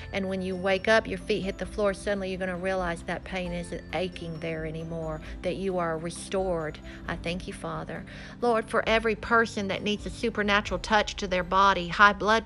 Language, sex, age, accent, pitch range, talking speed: English, female, 50-69, American, 185-225 Hz, 205 wpm